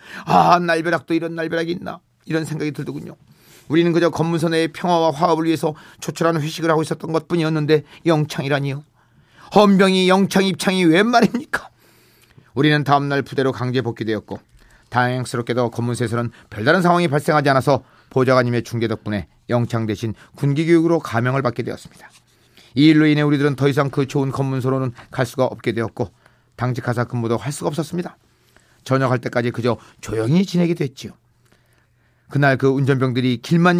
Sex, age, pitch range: male, 40-59, 120-160 Hz